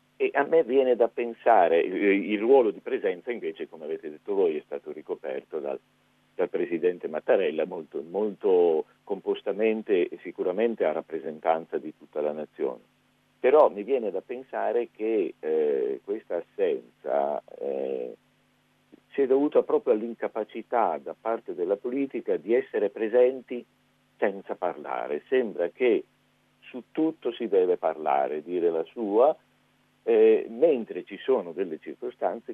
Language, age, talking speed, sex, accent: Italian, 50-69, 135 wpm, male, native